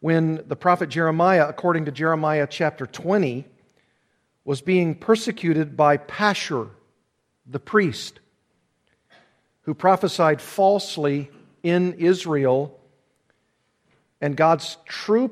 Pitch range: 145-180 Hz